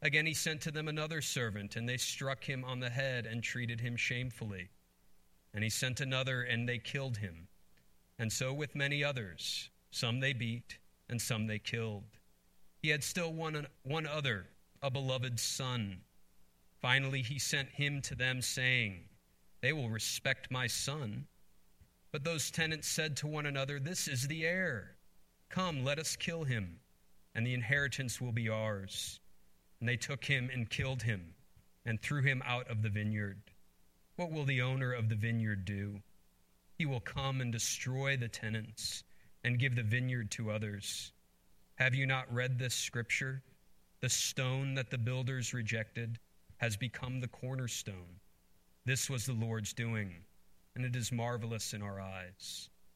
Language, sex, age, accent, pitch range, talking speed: English, male, 40-59, American, 110-135 Hz, 165 wpm